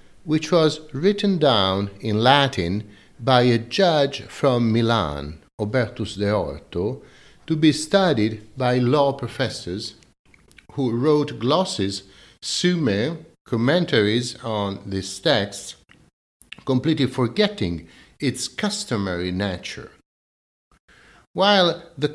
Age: 60-79